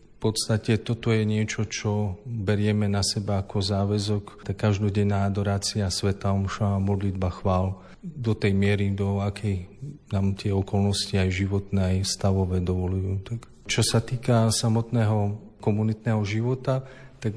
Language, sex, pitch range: Slovak, male, 100-110 Hz